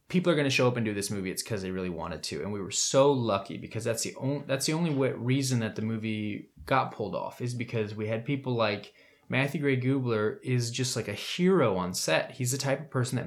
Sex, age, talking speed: male, 20-39, 260 wpm